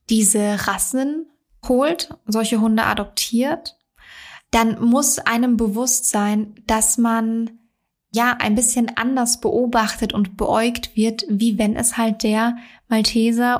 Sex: female